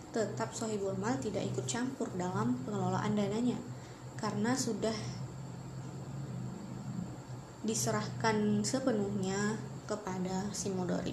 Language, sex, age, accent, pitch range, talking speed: Indonesian, female, 20-39, native, 195-225 Hz, 80 wpm